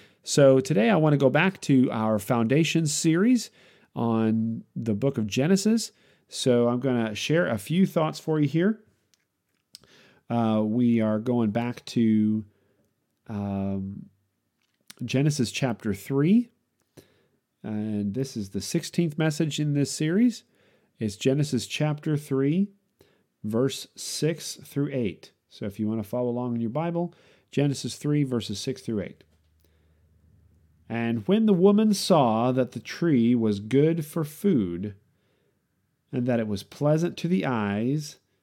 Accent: American